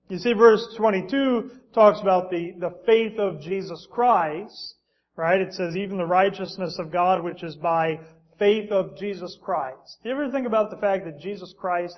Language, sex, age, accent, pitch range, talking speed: English, male, 40-59, American, 165-200 Hz, 185 wpm